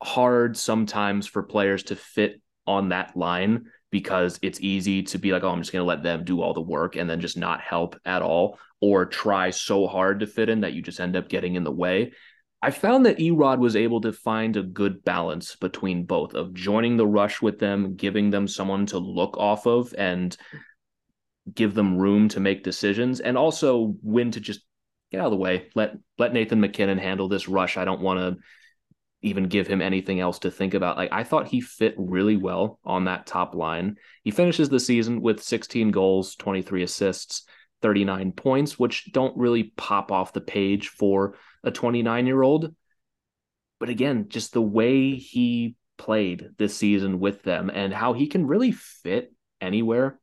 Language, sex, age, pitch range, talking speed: English, male, 30-49, 95-120 Hz, 190 wpm